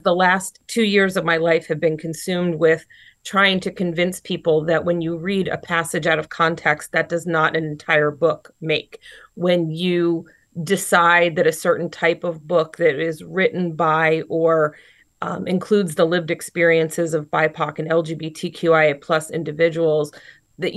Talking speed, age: 165 wpm, 30-49